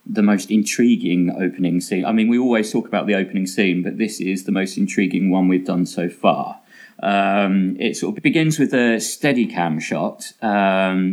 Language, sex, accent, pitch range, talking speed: English, male, British, 90-110 Hz, 195 wpm